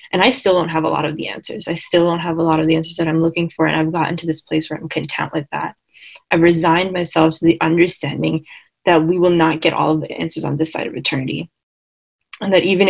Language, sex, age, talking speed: English, female, 20-39, 265 wpm